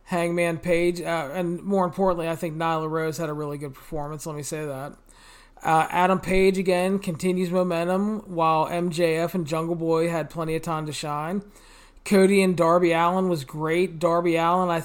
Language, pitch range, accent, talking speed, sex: English, 160-185 Hz, American, 180 wpm, male